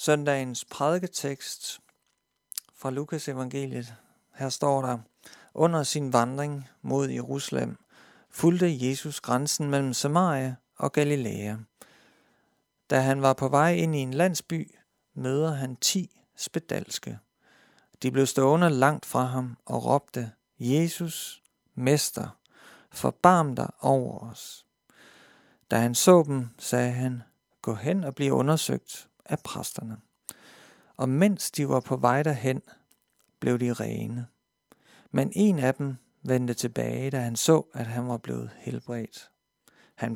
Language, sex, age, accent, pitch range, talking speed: Danish, male, 50-69, native, 120-150 Hz, 125 wpm